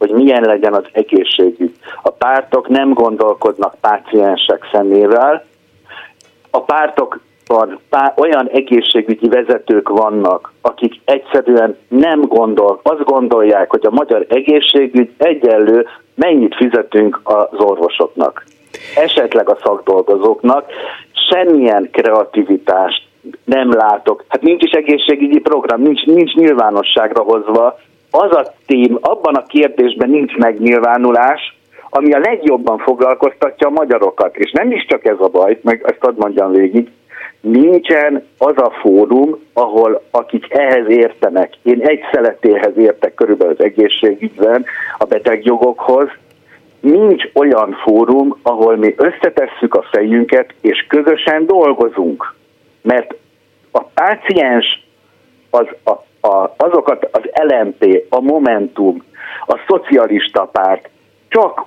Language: Hungarian